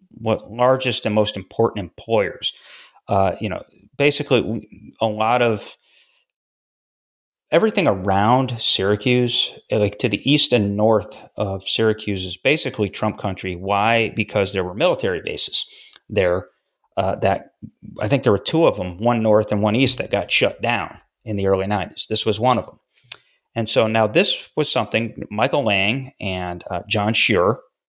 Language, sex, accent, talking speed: English, male, American, 160 wpm